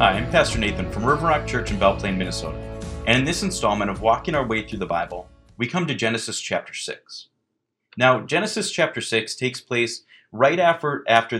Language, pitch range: English, 105-130 Hz